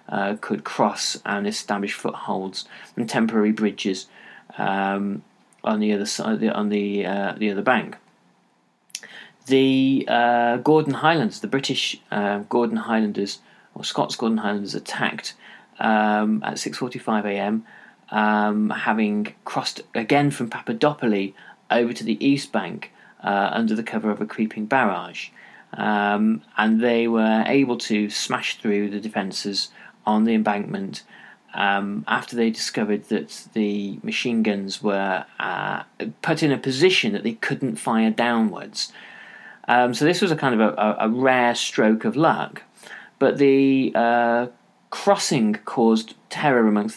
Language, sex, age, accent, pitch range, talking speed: English, male, 30-49, British, 105-135 Hz, 140 wpm